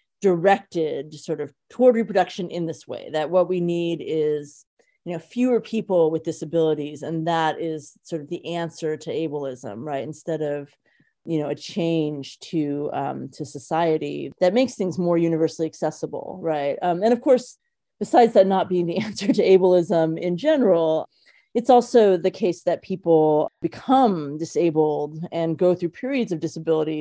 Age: 30-49